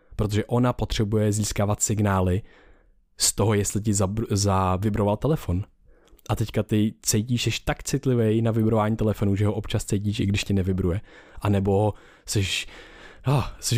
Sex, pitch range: male, 100-120 Hz